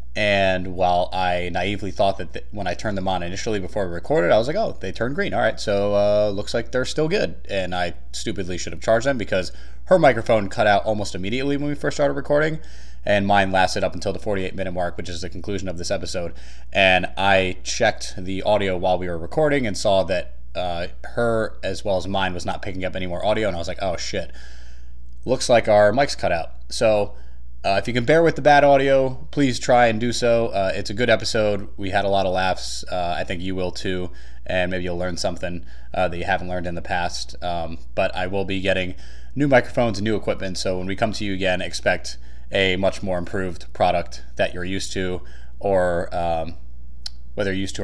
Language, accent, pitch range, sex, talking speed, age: English, American, 85-105 Hz, male, 230 wpm, 20-39